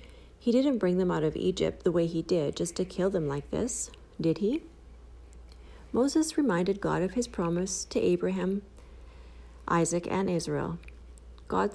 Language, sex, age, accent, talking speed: English, female, 40-59, American, 160 wpm